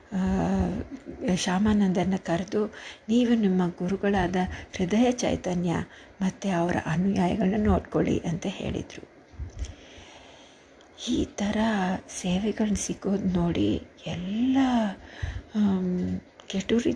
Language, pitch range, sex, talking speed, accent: Kannada, 175-235 Hz, female, 70 wpm, native